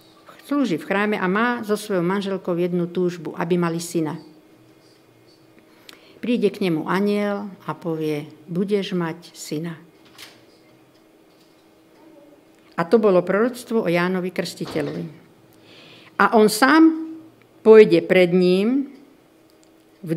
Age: 50-69